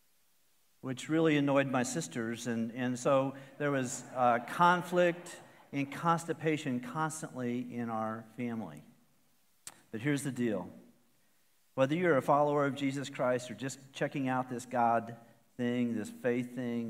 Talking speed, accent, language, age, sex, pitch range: 140 wpm, American, English, 50-69, male, 115-155 Hz